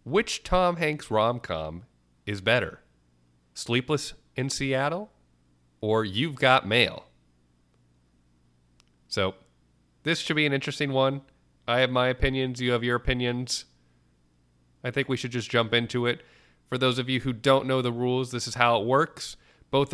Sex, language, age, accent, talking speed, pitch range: male, English, 30-49, American, 155 wpm, 90-130 Hz